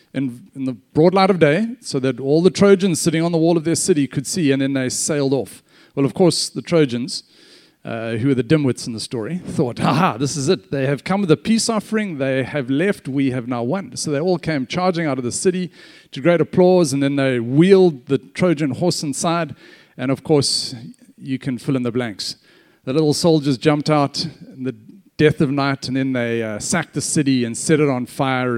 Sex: male